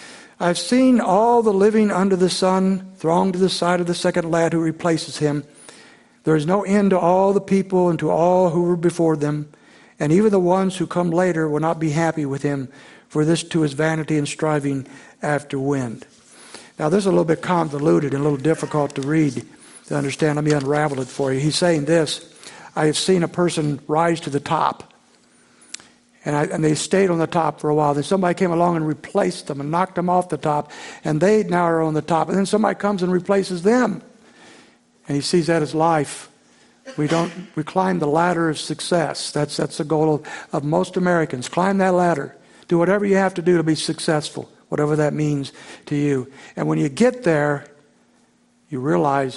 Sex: male